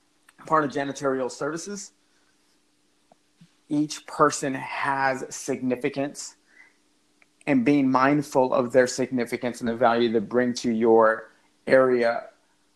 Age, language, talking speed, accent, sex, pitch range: 30-49, English, 105 wpm, American, male, 120-140 Hz